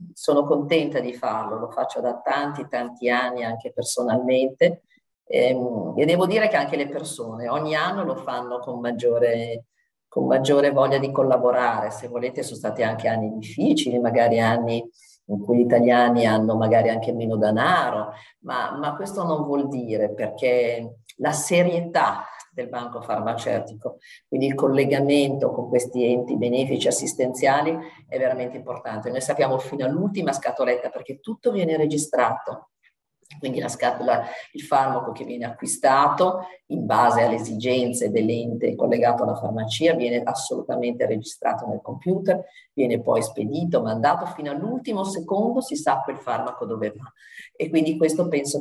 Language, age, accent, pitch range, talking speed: Italian, 40-59, native, 120-160 Hz, 145 wpm